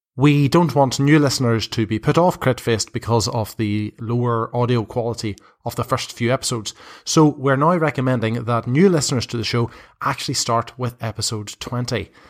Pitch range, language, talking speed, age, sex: 115-145 Hz, English, 175 wpm, 30-49, male